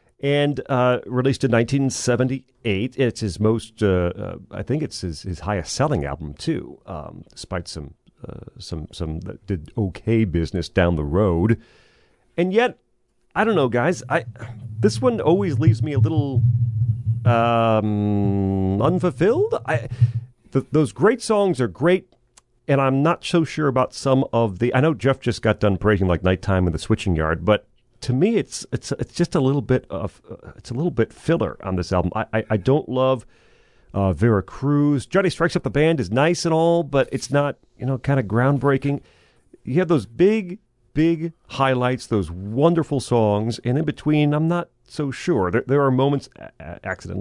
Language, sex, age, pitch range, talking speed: English, male, 40-59, 100-140 Hz, 185 wpm